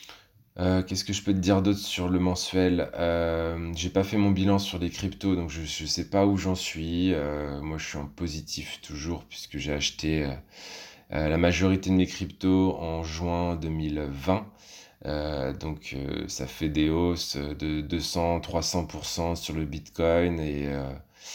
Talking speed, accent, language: 170 wpm, French, French